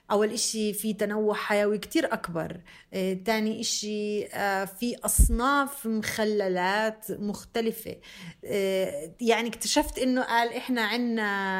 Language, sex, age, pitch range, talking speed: English, female, 30-49, 190-255 Hz, 100 wpm